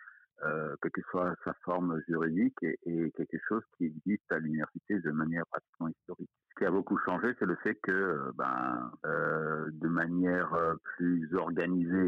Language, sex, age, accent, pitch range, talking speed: French, male, 50-69, French, 80-90 Hz, 170 wpm